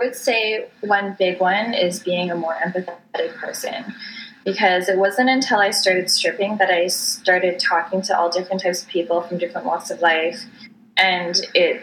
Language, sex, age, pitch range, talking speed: English, female, 10-29, 170-200 Hz, 180 wpm